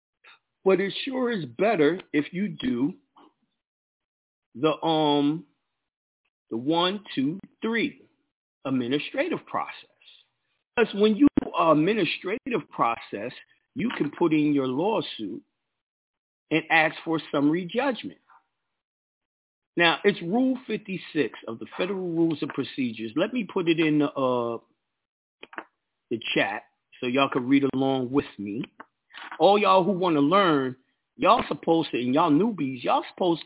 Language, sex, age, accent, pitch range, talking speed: English, male, 50-69, American, 145-205 Hz, 135 wpm